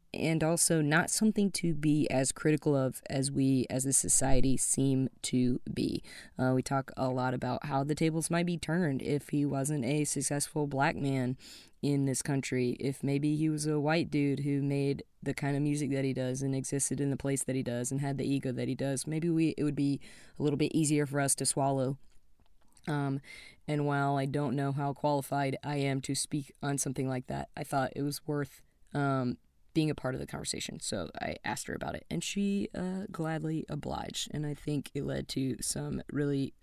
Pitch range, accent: 130-150 Hz, American